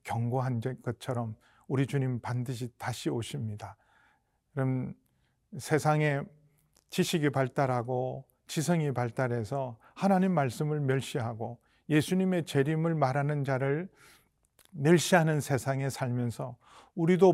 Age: 40-59